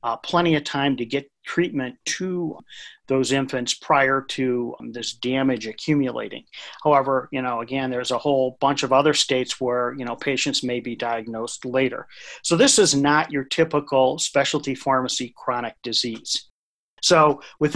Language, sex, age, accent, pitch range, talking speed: English, male, 40-59, American, 130-155 Hz, 160 wpm